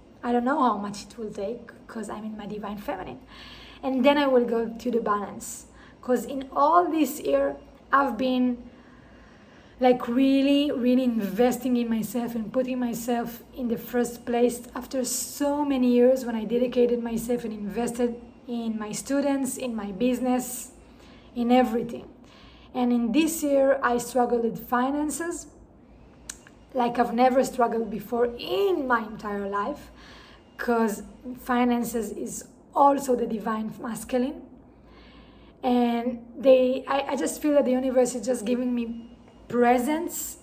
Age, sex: 20-39, female